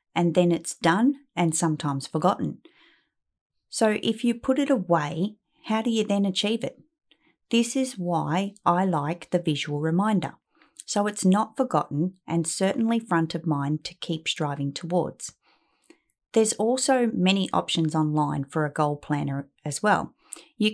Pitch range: 155-210 Hz